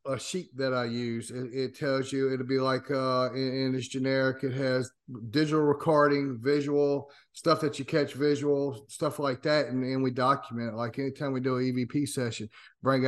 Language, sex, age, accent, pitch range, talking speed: English, male, 40-59, American, 120-140 Hz, 190 wpm